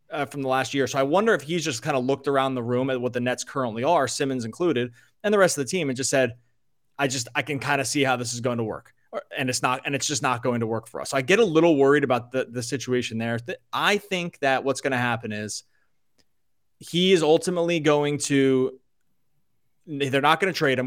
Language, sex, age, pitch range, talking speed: English, male, 20-39, 125-140 Hz, 255 wpm